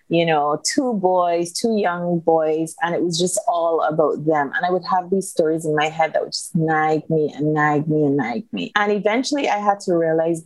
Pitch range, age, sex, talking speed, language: 165-190 Hz, 30-49, female, 230 wpm, English